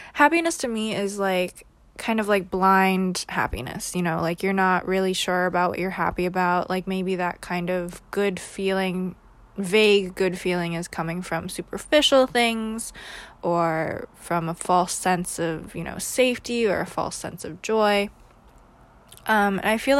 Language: English